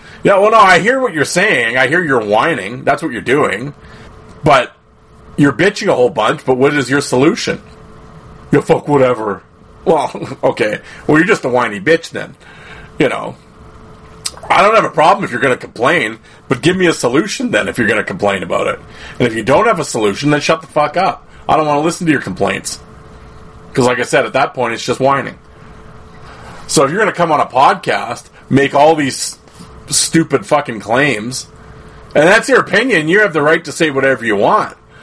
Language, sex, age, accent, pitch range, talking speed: English, male, 30-49, American, 125-155 Hz, 210 wpm